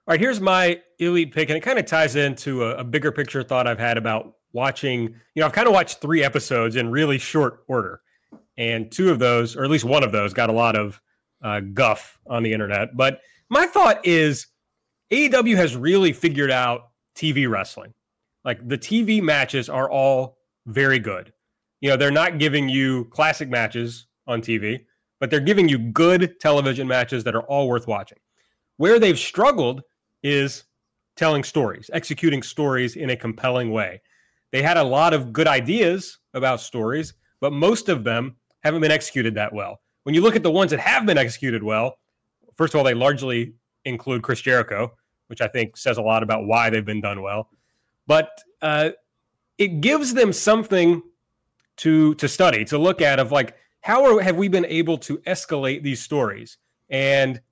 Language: English